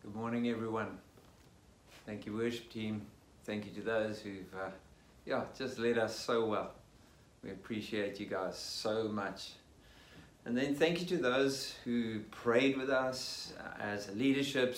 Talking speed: 155 wpm